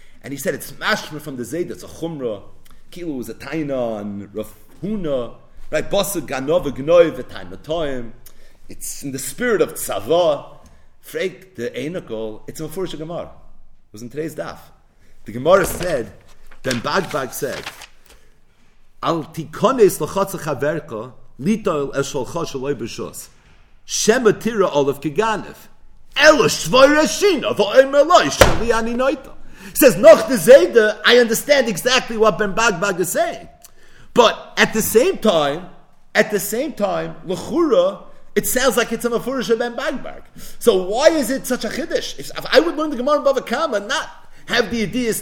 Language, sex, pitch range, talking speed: English, male, 150-250 Hz, 145 wpm